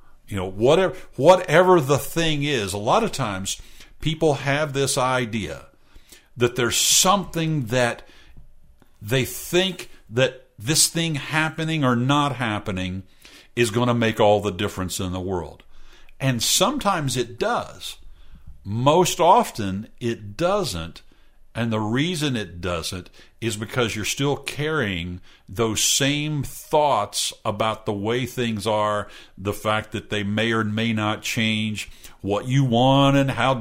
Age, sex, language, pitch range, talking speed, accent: 50-69, male, English, 105-145 Hz, 140 wpm, American